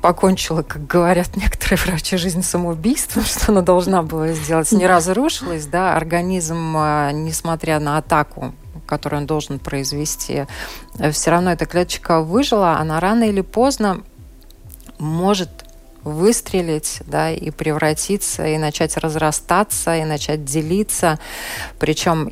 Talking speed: 120 wpm